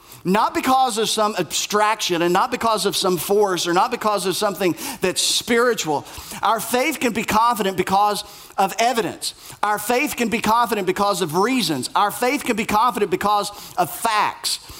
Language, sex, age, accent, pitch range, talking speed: English, male, 40-59, American, 195-235 Hz, 170 wpm